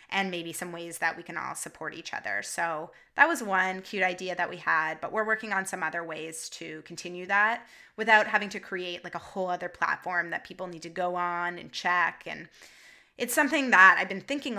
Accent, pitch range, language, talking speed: American, 175-210 Hz, English, 220 wpm